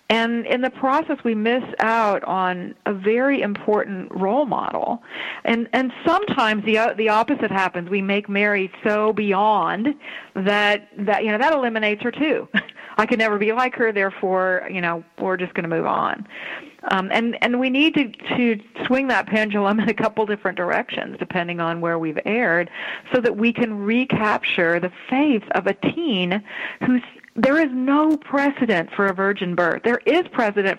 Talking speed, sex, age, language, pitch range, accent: 175 wpm, female, 40-59, English, 195-255 Hz, American